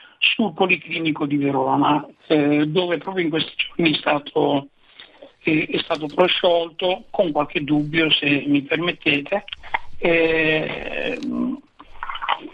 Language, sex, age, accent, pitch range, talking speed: Italian, male, 60-79, native, 155-200 Hz, 110 wpm